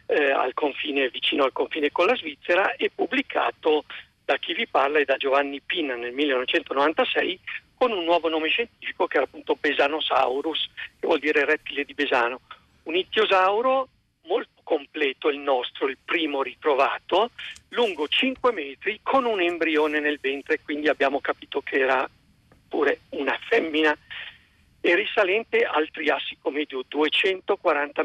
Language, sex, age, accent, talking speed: Italian, male, 50-69, native, 145 wpm